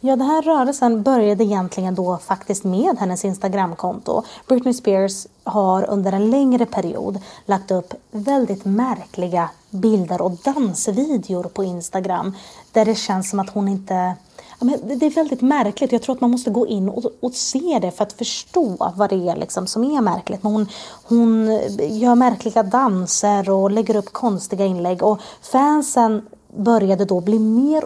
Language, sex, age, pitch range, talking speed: Swedish, female, 30-49, 190-235 Hz, 160 wpm